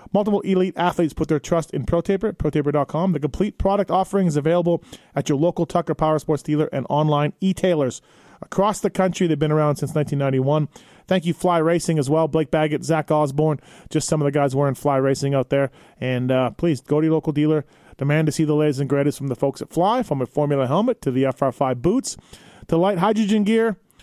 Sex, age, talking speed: male, 30-49, 215 wpm